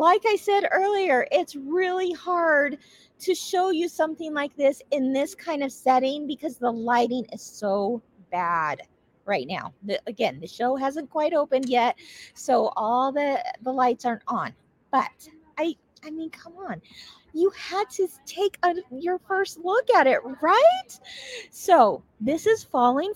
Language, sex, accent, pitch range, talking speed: English, female, American, 240-335 Hz, 160 wpm